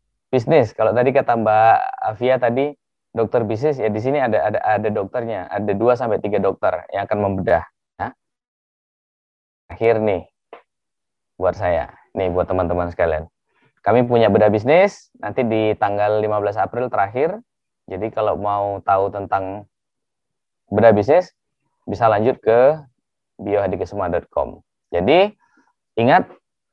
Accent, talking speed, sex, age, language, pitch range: native, 120 wpm, male, 20-39, Indonesian, 90-115 Hz